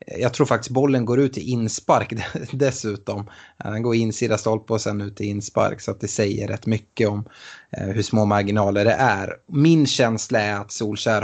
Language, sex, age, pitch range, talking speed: Swedish, male, 20-39, 105-130 Hz, 185 wpm